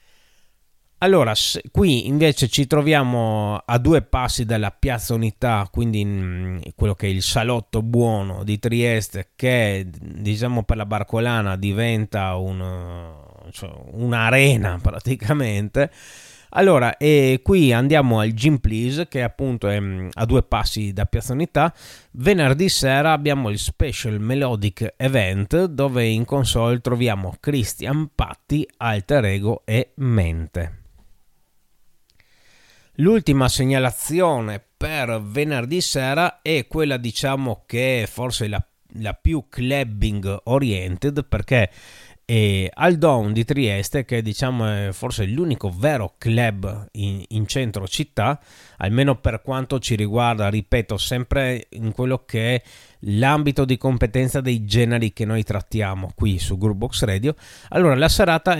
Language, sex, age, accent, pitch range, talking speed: Italian, male, 20-39, native, 105-135 Hz, 125 wpm